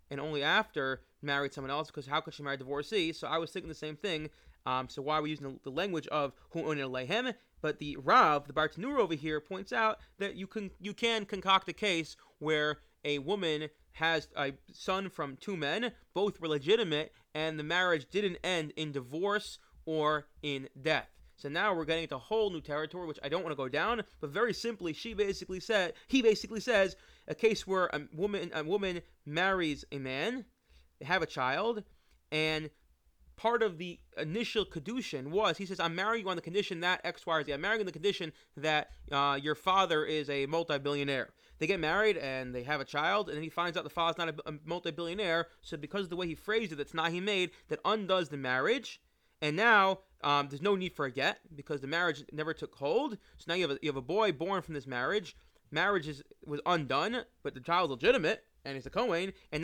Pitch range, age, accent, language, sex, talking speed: 150-200 Hz, 30-49, American, English, male, 220 wpm